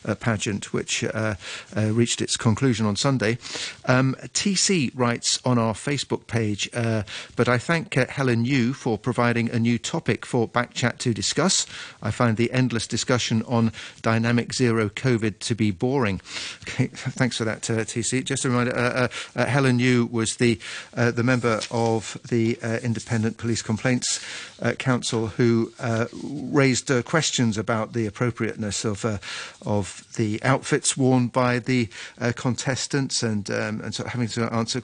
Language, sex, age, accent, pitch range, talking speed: English, male, 50-69, British, 115-130 Hz, 170 wpm